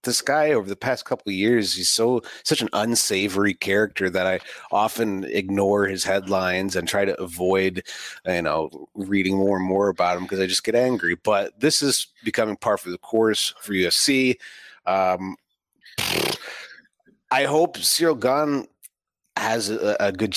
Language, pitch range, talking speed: English, 95-120 Hz, 165 wpm